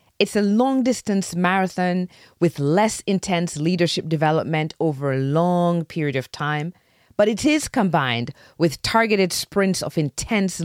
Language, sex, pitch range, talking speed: English, female, 150-210 Hz, 135 wpm